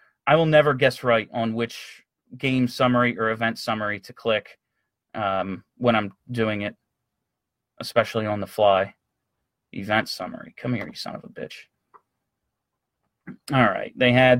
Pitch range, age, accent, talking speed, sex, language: 130-215 Hz, 30-49, American, 150 wpm, male, English